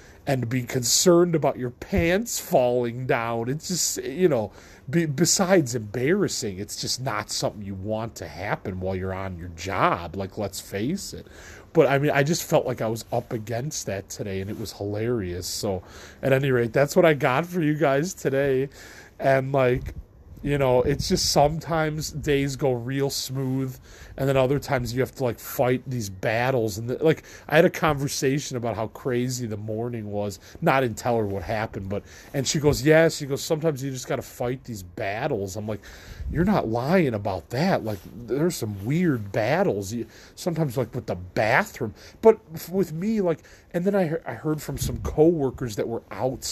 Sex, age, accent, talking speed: male, 30-49, American, 195 wpm